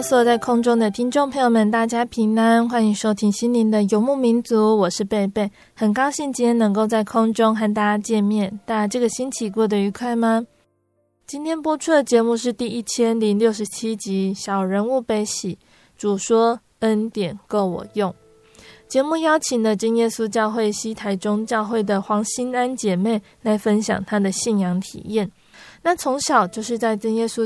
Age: 20-39